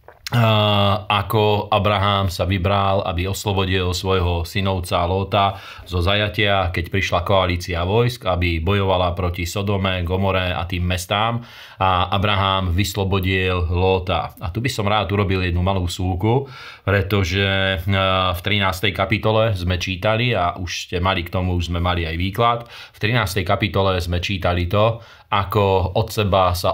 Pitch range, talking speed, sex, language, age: 90-105 Hz, 140 wpm, male, Slovak, 30-49